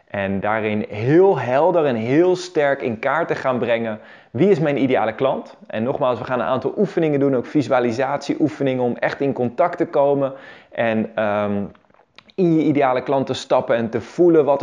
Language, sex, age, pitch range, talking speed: Dutch, male, 20-39, 110-145 Hz, 185 wpm